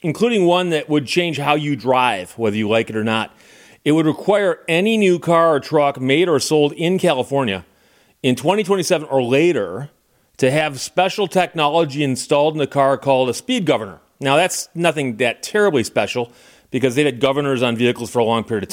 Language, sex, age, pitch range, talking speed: English, male, 40-59, 135-180 Hz, 190 wpm